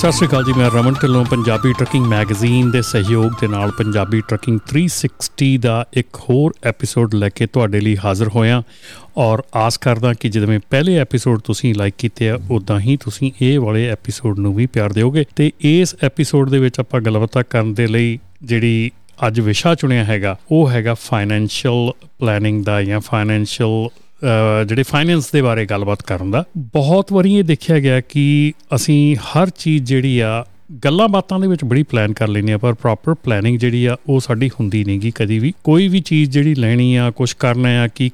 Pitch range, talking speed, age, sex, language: 110-145 Hz, 175 wpm, 40-59, male, Punjabi